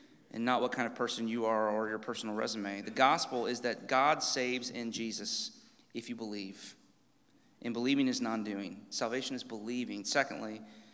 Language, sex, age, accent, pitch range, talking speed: English, male, 30-49, American, 125-205 Hz, 170 wpm